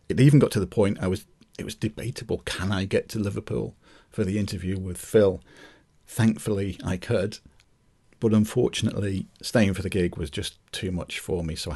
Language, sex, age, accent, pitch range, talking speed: English, male, 40-59, British, 90-115 Hz, 195 wpm